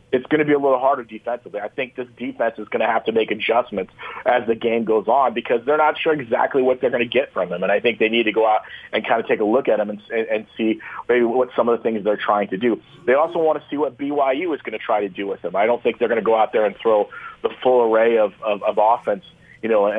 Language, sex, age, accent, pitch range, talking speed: English, male, 30-49, American, 110-145 Hz, 300 wpm